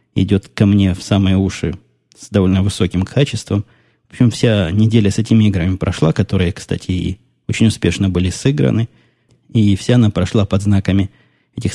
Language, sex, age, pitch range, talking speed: Russian, male, 20-39, 95-110 Hz, 165 wpm